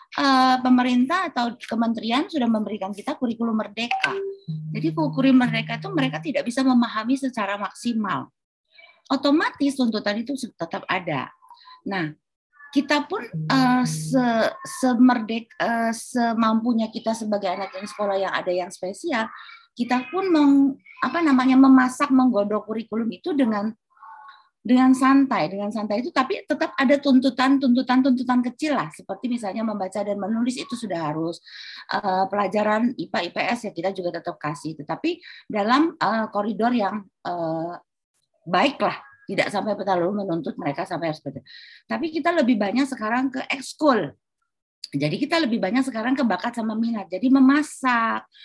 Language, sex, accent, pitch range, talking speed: Indonesian, female, native, 205-275 Hz, 135 wpm